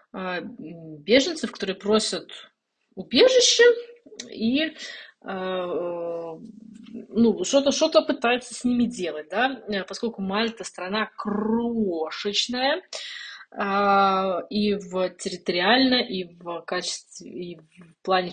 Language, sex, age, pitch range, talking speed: Russian, female, 20-39, 185-230 Hz, 80 wpm